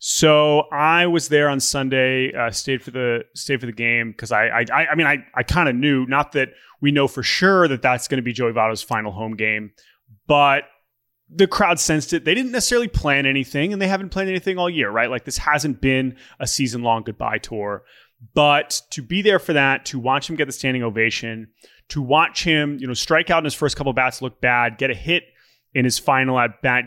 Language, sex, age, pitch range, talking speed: English, male, 30-49, 120-150 Hz, 230 wpm